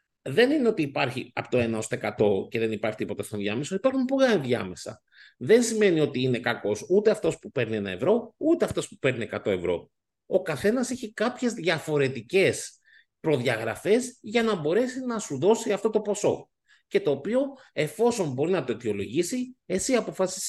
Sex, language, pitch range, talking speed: male, Greek, 130-210 Hz, 180 wpm